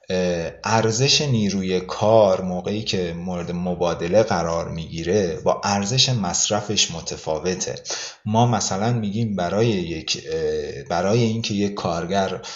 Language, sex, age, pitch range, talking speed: Persian, male, 30-49, 95-125 Hz, 105 wpm